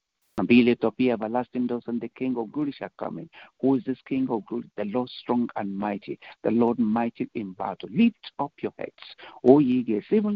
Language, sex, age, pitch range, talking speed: English, male, 60-79, 115-145 Hz, 225 wpm